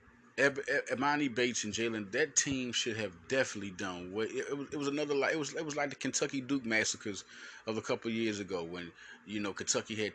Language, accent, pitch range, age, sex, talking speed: English, American, 110-180 Hz, 30-49, male, 185 wpm